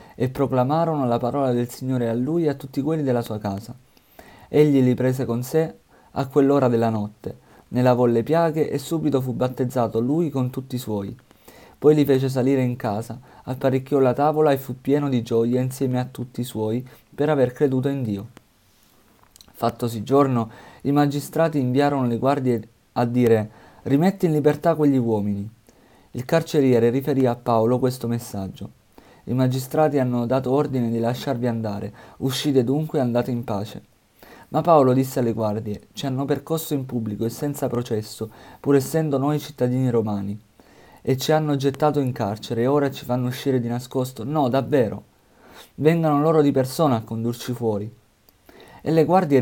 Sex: male